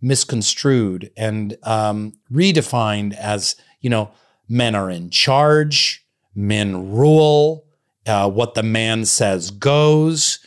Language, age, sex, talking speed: English, 40-59, male, 110 wpm